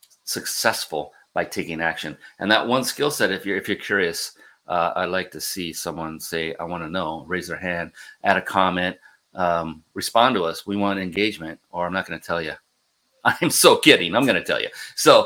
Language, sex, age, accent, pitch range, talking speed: English, male, 40-59, American, 90-110 Hz, 210 wpm